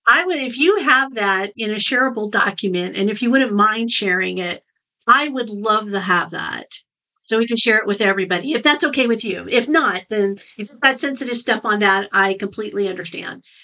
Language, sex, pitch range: English, female, 200-270 Hz